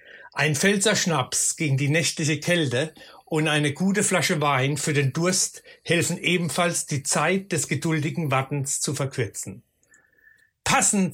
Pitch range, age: 145-175 Hz, 60-79